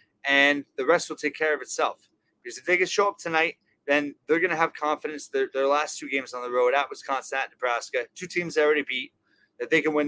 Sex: male